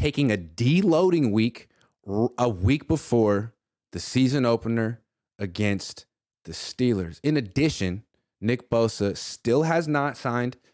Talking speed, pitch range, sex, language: 115 wpm, 105-145 Hz, male, English